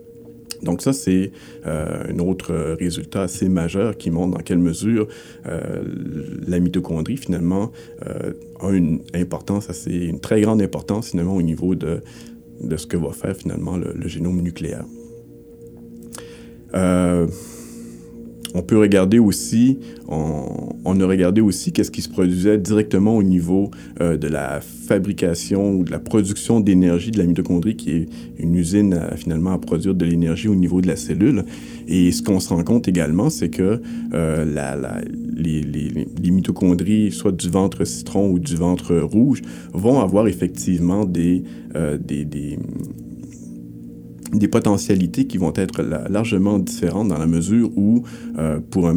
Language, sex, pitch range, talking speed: French, male, 80-100 Hz, 150 wpm